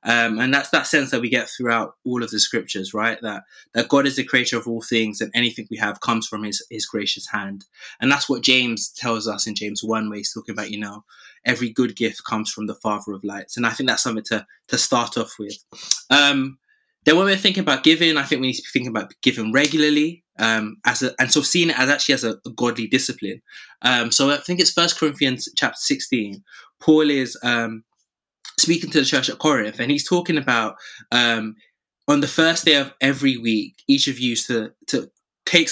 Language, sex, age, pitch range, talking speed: English, male, 20-39, 115-150 Hz, 225 wpm